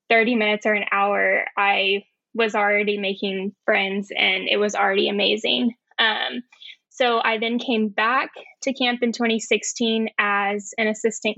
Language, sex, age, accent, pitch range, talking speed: English, female, 10-29, American, 205-230 Hz, 150 wpm